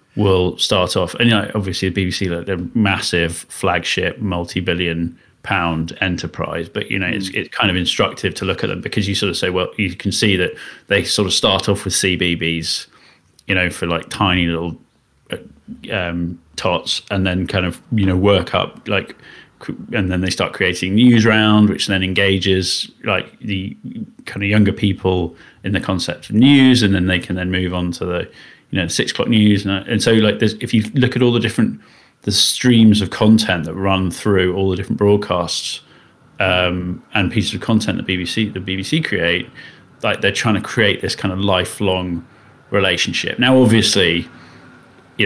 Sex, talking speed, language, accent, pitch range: male, 190 wpm, English, British, 90-105 Hz